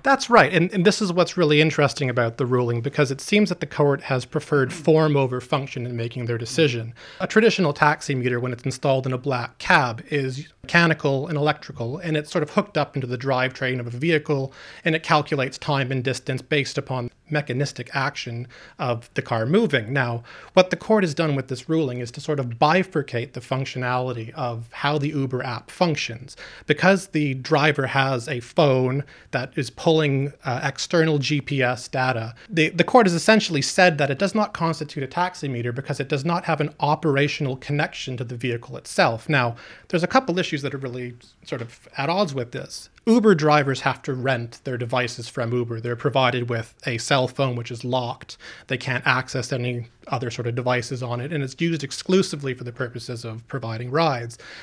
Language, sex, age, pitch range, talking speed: English, male, 30-49, 125-155 Hz, 200 wpm